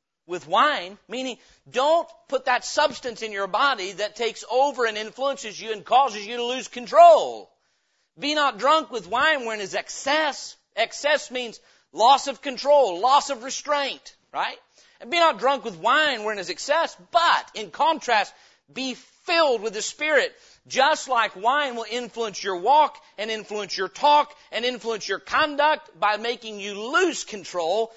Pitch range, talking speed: 210-290 Hz, 165 wpm